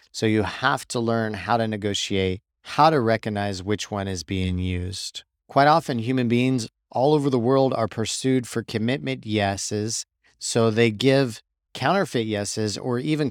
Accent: American